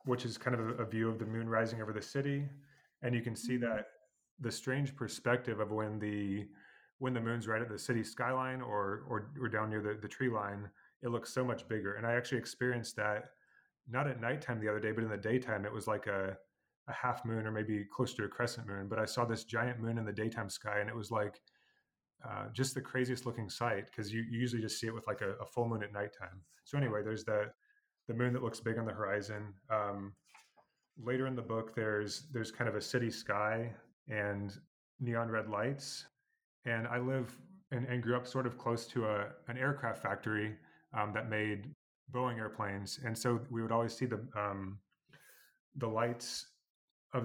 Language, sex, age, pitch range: Chinese, male, 30-49, 105-120 Hz